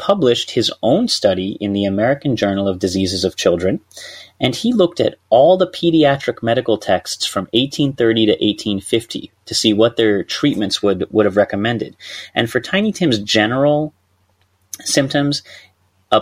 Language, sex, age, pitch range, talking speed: English, male, 30-49, 105-140 Hz, 150 wpm